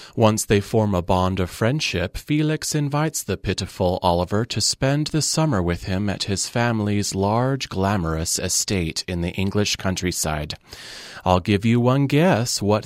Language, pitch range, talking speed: English, 95-125 Hz, 160 wpm